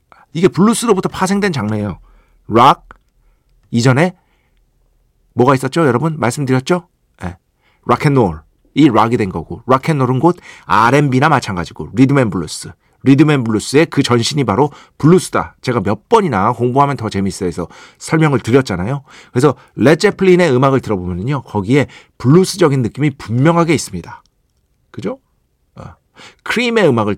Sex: male